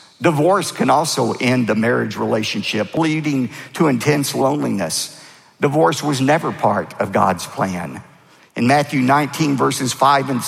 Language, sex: English, male